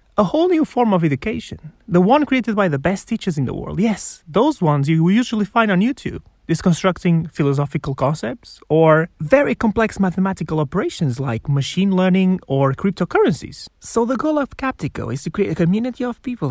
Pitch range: 150-220 Hz